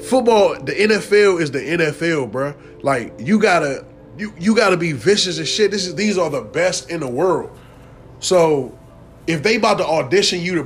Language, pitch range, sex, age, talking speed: English, 170-220 Hz, male, 20-39, 190 wpm